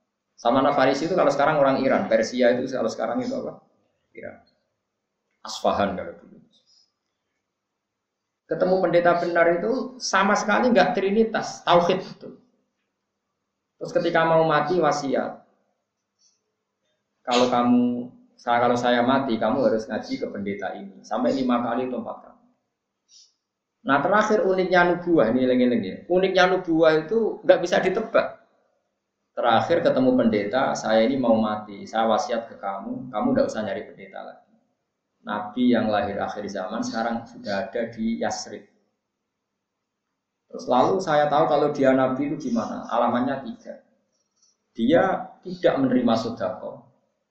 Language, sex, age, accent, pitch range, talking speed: Indonesian, male, 20-39, native, 120-195 Hz, 130 wpm